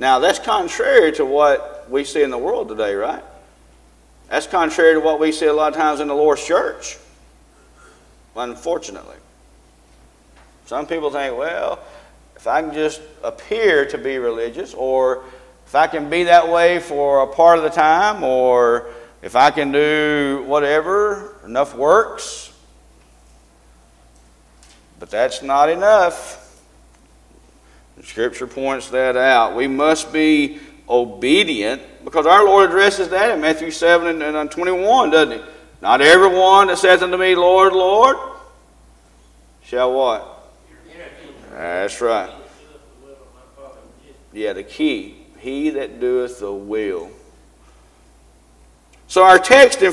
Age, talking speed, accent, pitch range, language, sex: 50-69, 130 wpm, American, 120-170 Hz, English, male